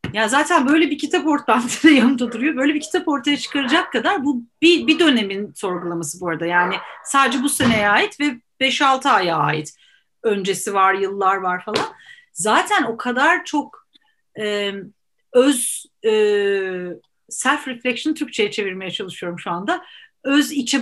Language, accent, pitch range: Turkish, native, 210-280 Hz